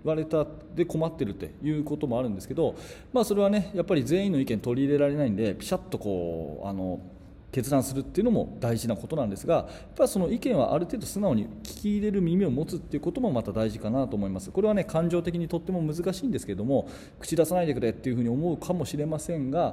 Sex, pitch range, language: male, 120-190 Hz, Japanese